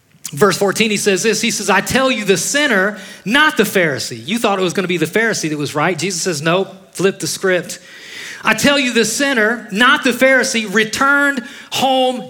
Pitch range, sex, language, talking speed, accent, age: 140-210 Hz, male, English, 205 wpm, American, 30-49